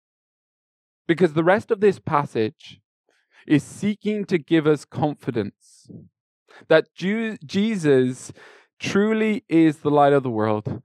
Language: English